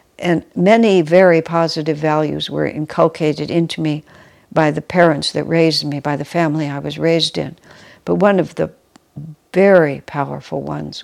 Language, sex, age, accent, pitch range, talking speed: English, female, 60-79, American, 150-175 Hz, 160 wpm